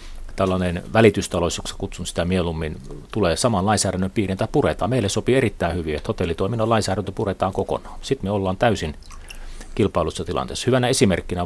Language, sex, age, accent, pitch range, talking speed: Finnish, male, 30-49, native, 80-100 Hz, 140 wpm